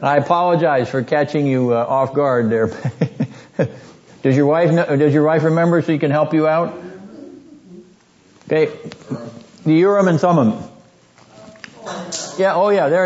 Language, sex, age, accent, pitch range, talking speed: English, male, 60-79, American, 130-170 Hz, 145 wpm